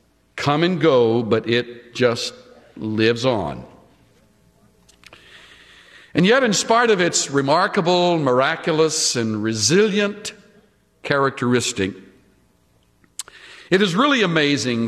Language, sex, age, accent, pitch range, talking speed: English, male, 60-79, American, 115-165 Hz, 95 wpm